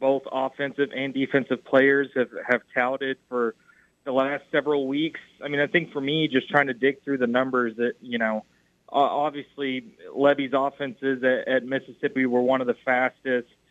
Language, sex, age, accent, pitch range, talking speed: English, male, 20-39, American, 125-145 Hz, 180 wpm